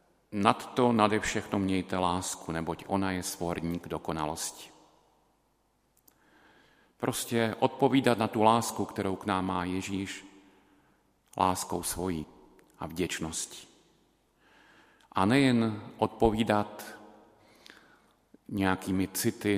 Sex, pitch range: male, 90-105 Hz